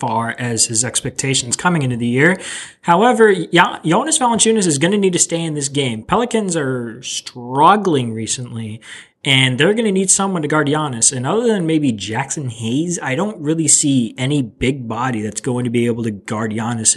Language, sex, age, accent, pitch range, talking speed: English, male, 20-39, American, 120-160 Hz, 200 wpm